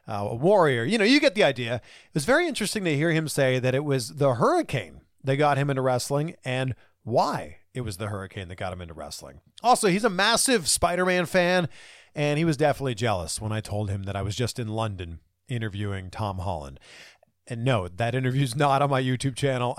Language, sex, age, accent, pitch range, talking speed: English, male, 40-59, American, 110-165 Hz, 215 wpm